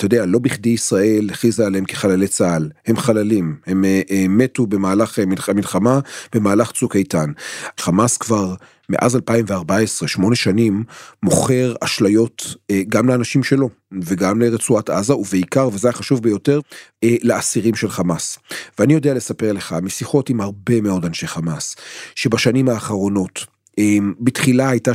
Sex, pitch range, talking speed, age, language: male, 110-145 Hz, 130 wpm, 40-59, Hebrew